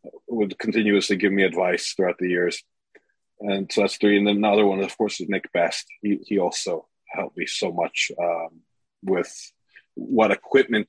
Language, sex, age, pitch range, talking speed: English, male, 30-49, 95-120 Hz, 175 wpm